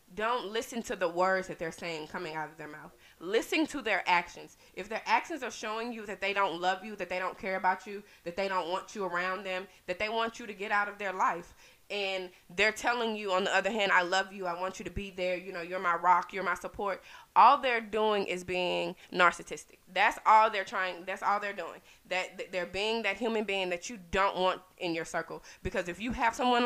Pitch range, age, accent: 180-220 Hz, 20-39, American